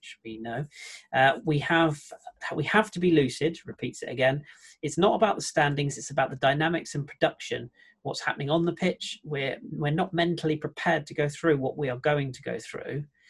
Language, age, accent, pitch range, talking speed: English, 40-59, British, 135-170 Hz, 200 wpm